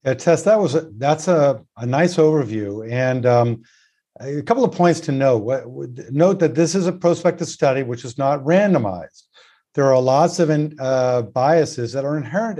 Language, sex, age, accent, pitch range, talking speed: English, male, 50-69, American, 130-175 Hz, 165 wpm